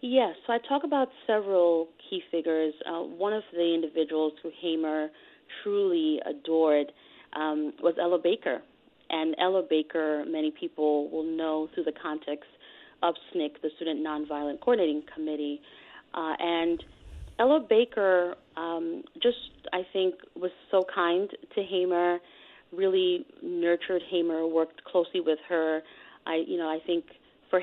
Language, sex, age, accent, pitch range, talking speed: English, female, 30-49, American, 155-205 Hz, 140 wpm